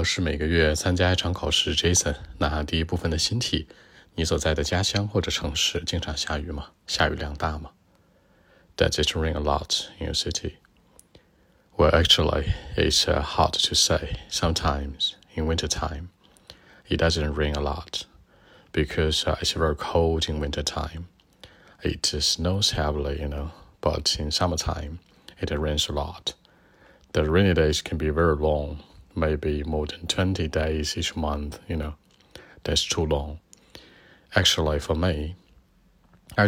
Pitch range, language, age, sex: 75-90 Hz, Chinese, 30-49, male